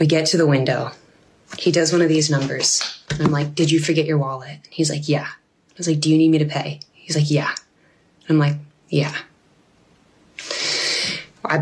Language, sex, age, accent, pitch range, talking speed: English, female, 20-39, American, 145-165 Hz, 195 wpm